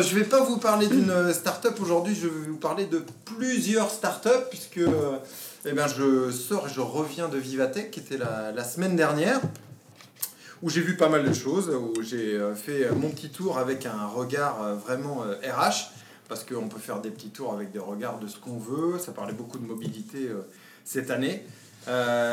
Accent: French